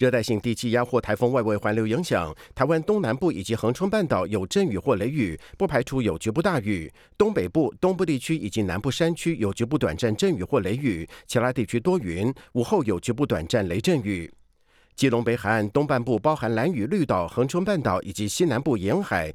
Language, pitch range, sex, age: Chinese, 105-145 Hz, male, 50-69